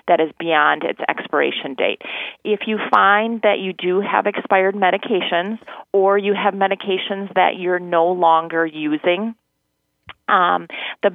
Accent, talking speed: American, 140 wpm